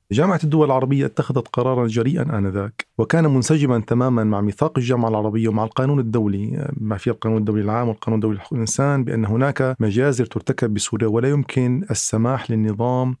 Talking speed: 160 wpm